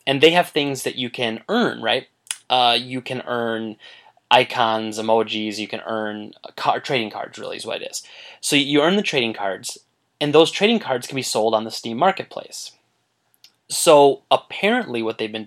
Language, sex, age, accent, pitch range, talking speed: English, male, 20-39, American, 115-165 Hz, 180 wpm